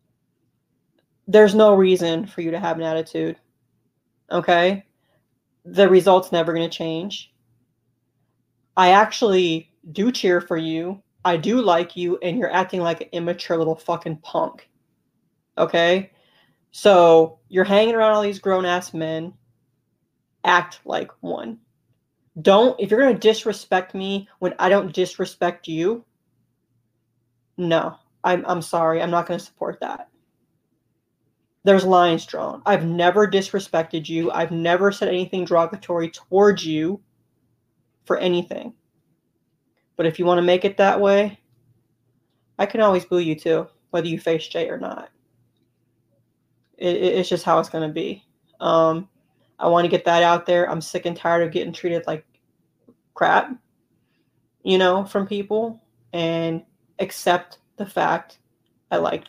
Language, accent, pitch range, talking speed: English, American, 160-190 Hz, 145 wpm